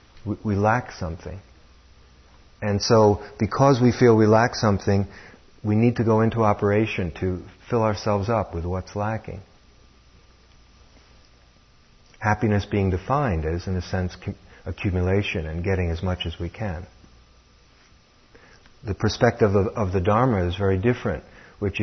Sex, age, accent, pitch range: male, 50-69, American, 85-115 Hz